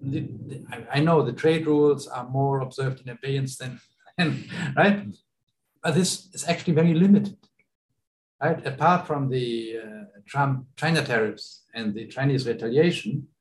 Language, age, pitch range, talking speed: English, 60-79, 125-160 Hz, 140 wpm